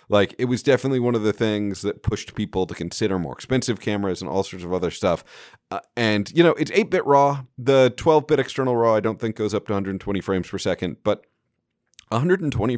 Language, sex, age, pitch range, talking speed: English, male, 40-59, 100-140 Hz, 210 wpm